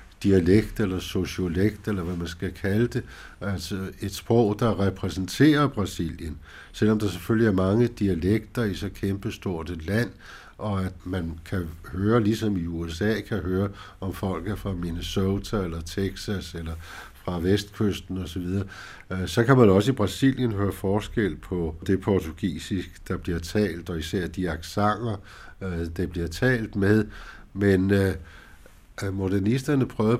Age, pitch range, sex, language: 60-79, 90-105 Hz, male, Danish